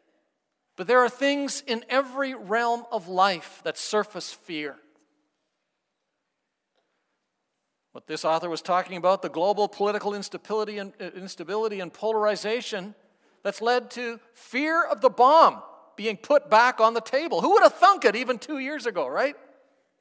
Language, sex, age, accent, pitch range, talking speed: English, male, 50-69, American, 195-260 Hz, 145 wpm